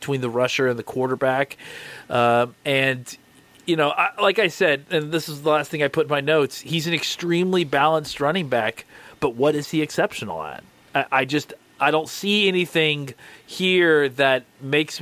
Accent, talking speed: American, 185 wpm